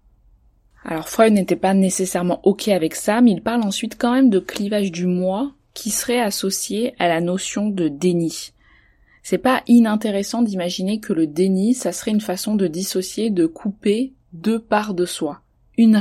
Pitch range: 170-215 Hz